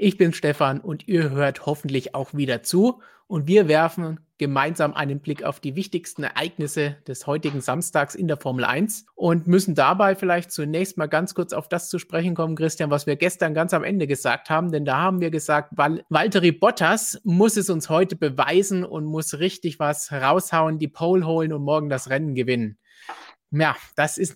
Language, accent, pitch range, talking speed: German, German, 145-175 Hz, 190 wpm